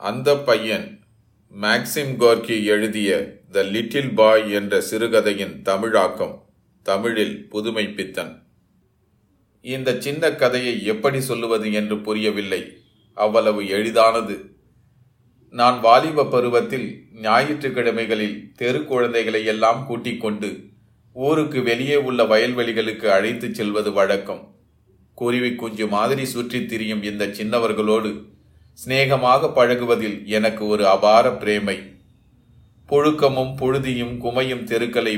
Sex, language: male, Tamil